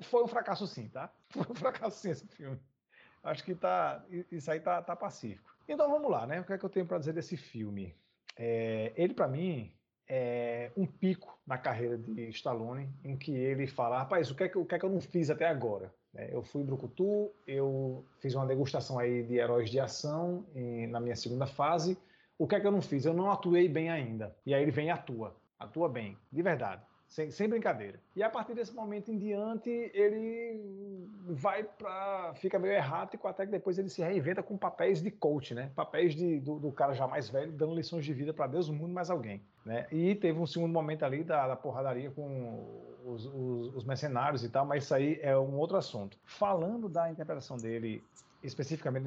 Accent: Brazilian